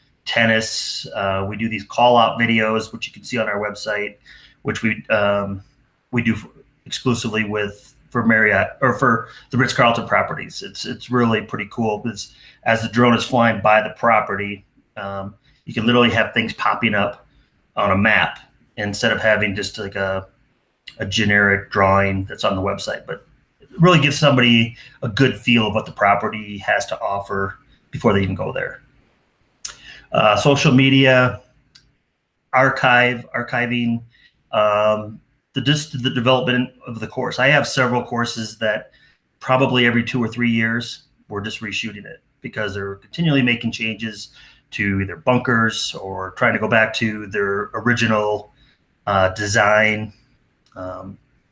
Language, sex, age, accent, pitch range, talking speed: English, male, 30-49, American, 105-125 Hz, 160 wpm